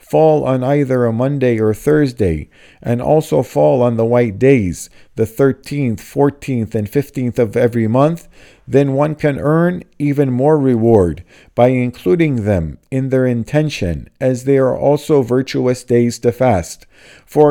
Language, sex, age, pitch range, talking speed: English, male, 50-69, 120-145 Hz, 150 wpm